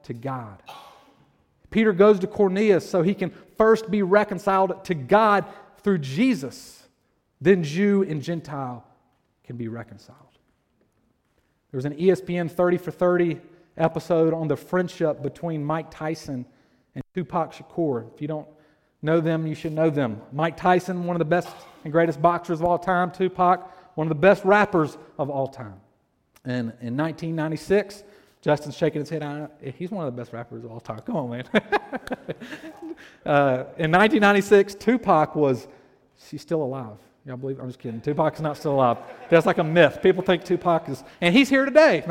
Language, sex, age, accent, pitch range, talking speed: English, male, 40-59, American, 145-185 Hz, 170 wpm